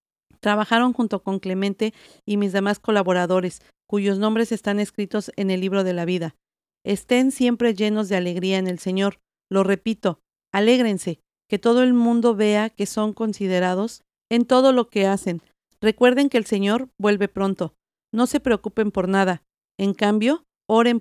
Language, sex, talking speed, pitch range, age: Spanish, female, 160 wpm, 190-225 Hz, 50-69